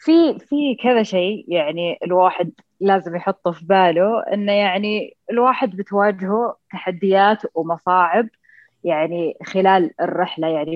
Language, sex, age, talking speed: Arabic, female, 20-39, 110 wpm